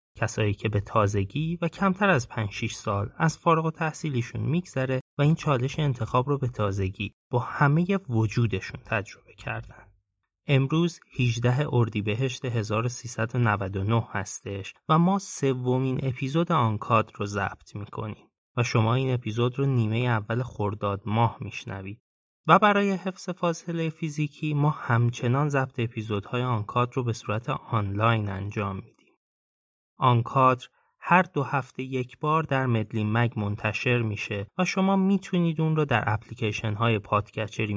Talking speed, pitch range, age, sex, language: 135 wpm, 110-145 Hz, 30-49, male, Persian